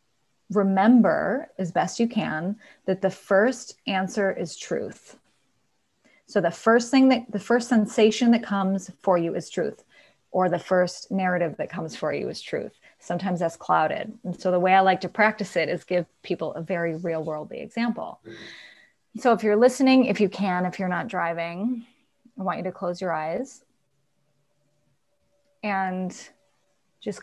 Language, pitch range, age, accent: English, 175-215 Hz, 20-39, American